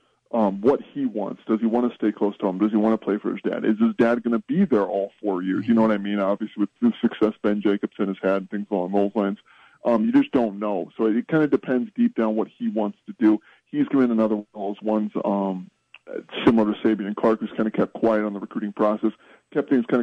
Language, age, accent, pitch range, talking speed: English, 20-39, American, 100-115 Hz, 260 wpm